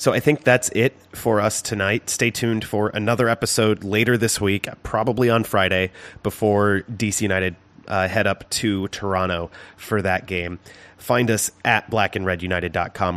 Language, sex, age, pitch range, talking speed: English, male, 30-49, 90-110 Hz, 155 wpm